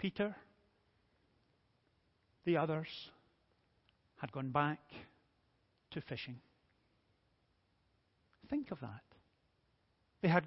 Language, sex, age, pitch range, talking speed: English, male, 50-69, 165-235 Hz, 75 wpm